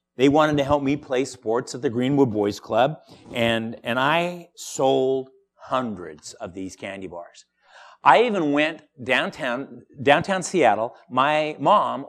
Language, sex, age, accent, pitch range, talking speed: English, male, 50-69, American, 120-185 Hz, 145 wpm